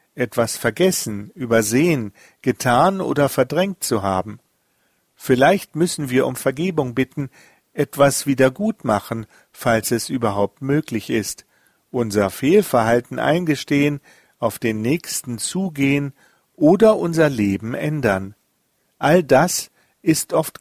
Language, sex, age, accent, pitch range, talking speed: German, male, 50-69, German, 110-150 Hz, 105 wpm